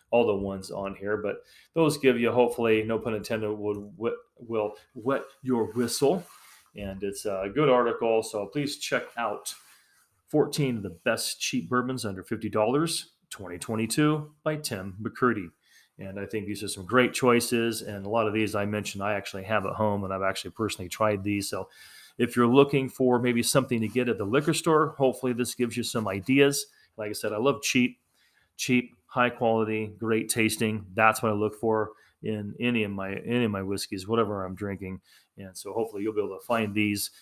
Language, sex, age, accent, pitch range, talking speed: English, male, 30-49, American, 105-125 Hz, 190 wpm